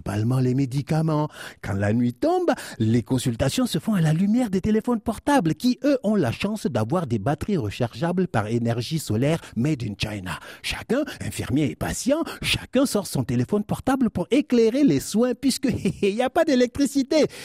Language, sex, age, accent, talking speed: French, male, 60-79, French, 175 wpm